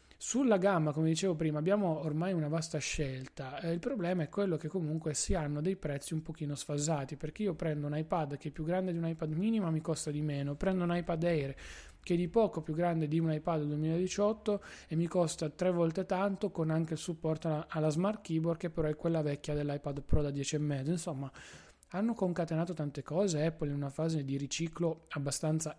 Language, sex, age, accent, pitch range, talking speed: Italian, male, 20-39, native, 145-170 Hz, 205 wpm